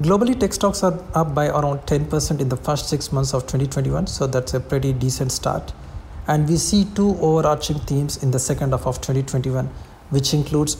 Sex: male